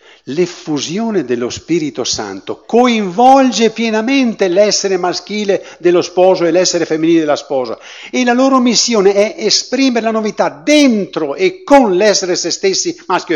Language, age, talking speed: Italian, 60-79, 135 wpm